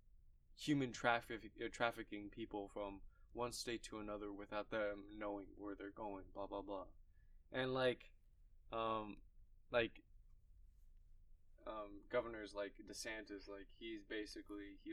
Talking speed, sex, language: 125 wpm, male, English